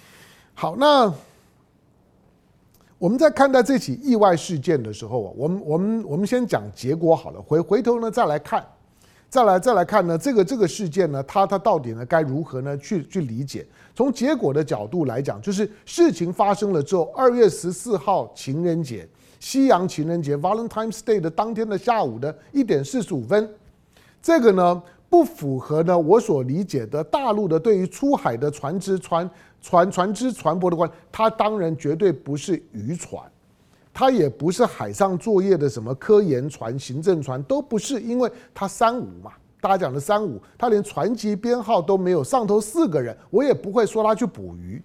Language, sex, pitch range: Chinese, male, 155-225 Hz